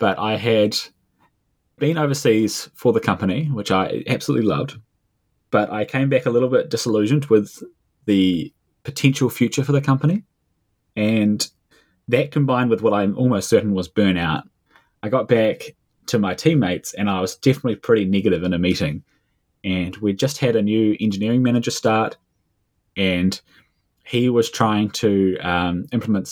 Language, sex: English, male